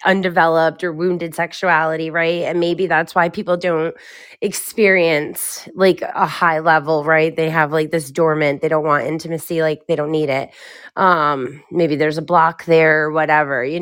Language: English